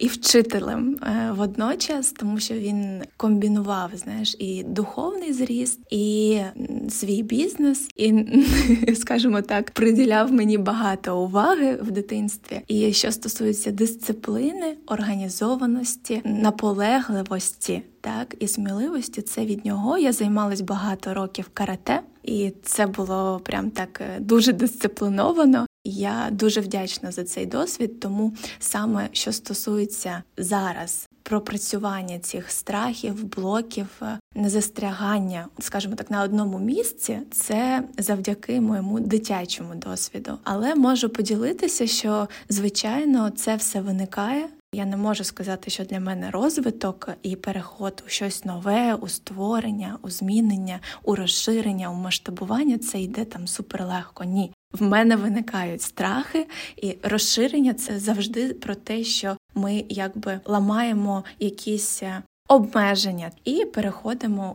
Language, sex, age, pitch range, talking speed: Ukrainian, female, 20-39, 200-235 Hz, 120 wpm